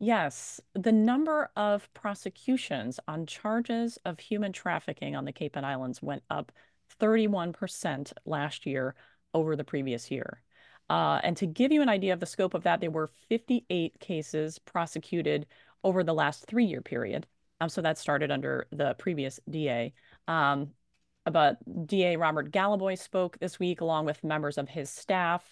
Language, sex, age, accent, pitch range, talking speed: English, female, 30-49, American, 155-210 Hz, 160 wpm